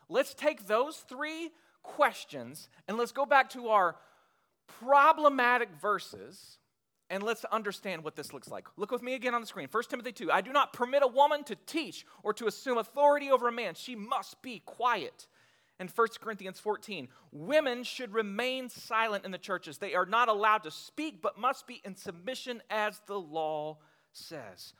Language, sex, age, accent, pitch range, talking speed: English, male, 40-59, American, 190-270 Hz, 180 wpm